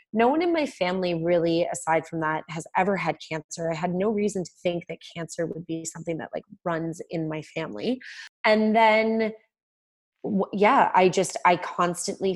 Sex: female